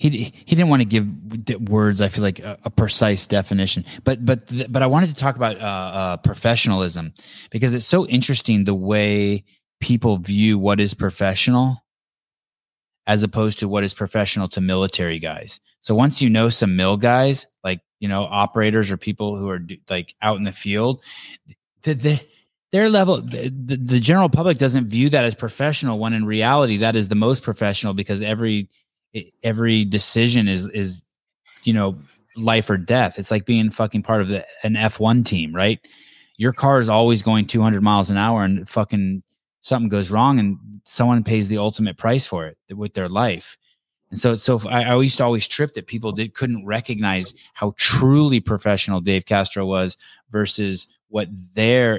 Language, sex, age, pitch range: English, male, 20-39, 100-120 Hz